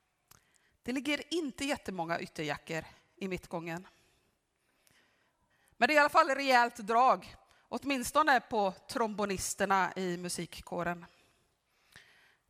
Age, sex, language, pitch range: 30-49, female, Swedish, 185-255 Hz